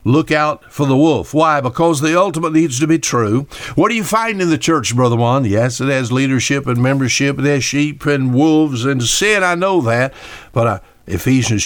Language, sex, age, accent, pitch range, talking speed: English, male, 60-79, American, 105-140 Hz, 215 wpm